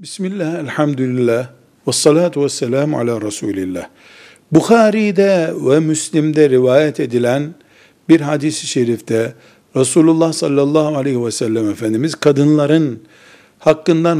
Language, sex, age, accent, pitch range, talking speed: Turkish, male, 60-79, native, 135-160 Hz, 95 wpm